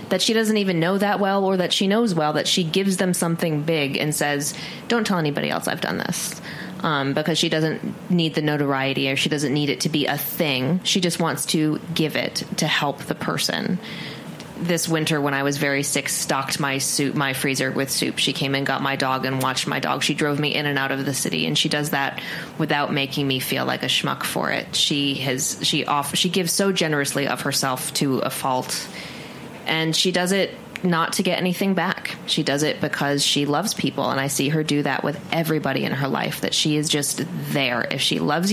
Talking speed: 230 wpm